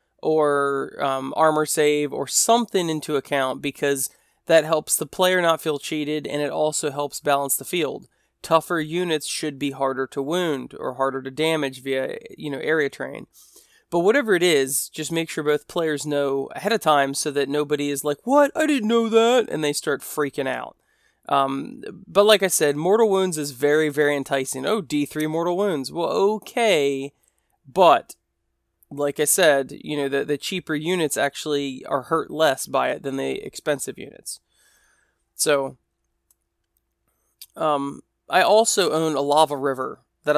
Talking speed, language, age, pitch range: 170 wpm, English, 20-39, 140-160 Hz